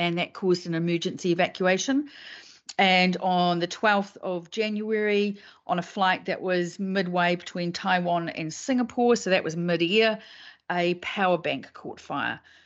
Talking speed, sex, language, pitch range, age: 145 wpm, female, English, 165-200 Hz, 40-59